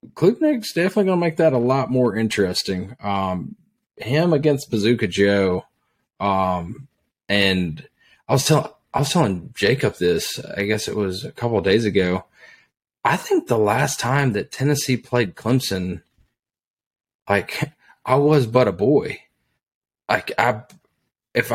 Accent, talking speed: American, 145 wpm